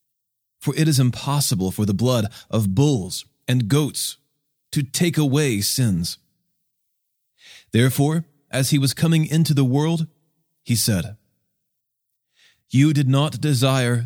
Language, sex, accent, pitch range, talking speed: English, male, American, 110-145 Hz, 125 wpm